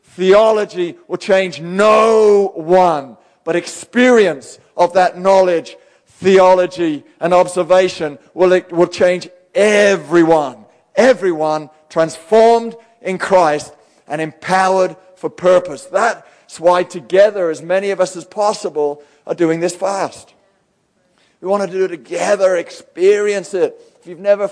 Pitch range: 165-195 Hz